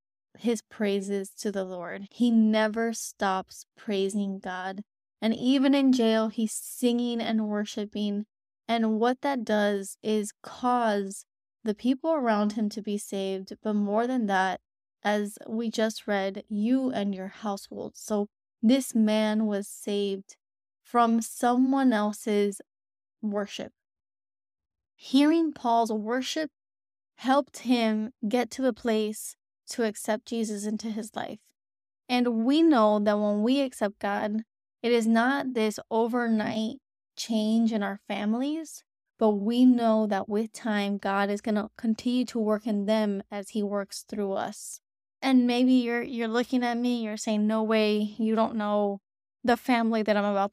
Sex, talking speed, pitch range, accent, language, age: female, 145 wpm, 205-235 Hz, American, English, 20-39